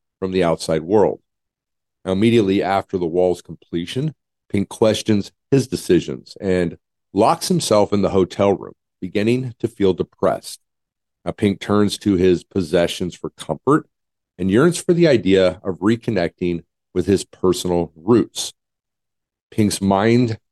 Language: English